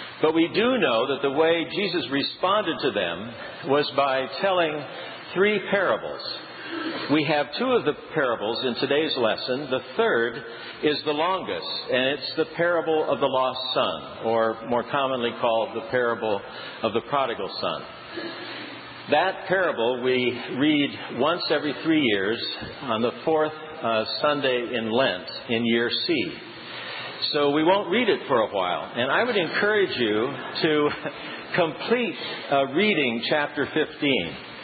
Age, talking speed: 60-79, 145 wpm